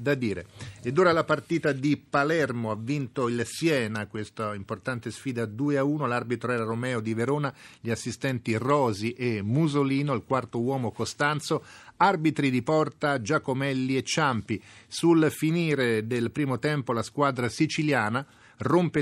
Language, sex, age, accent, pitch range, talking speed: Italian, male, 40-59, native, 115-145 Hz, 135 wpm